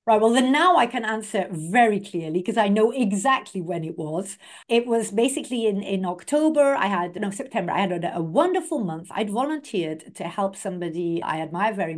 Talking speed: 200 wpm